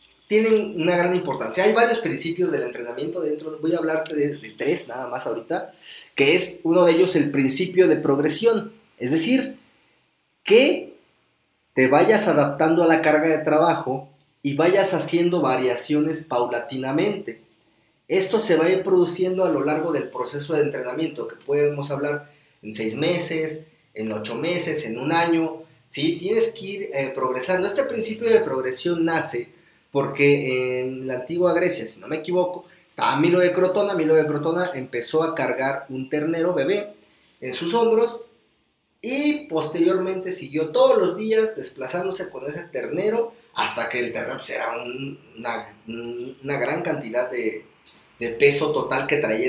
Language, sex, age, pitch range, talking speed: Spanish, male, 30-49, 140-185 Hz, 160 wpm